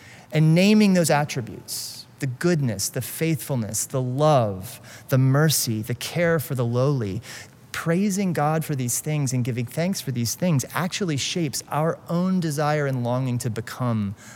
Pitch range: 120-150 Hz